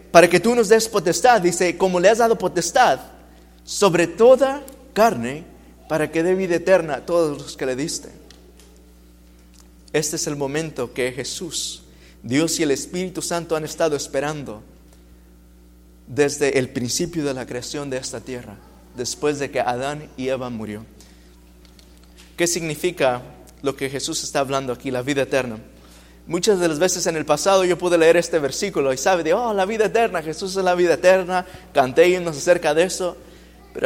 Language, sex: Spanish, male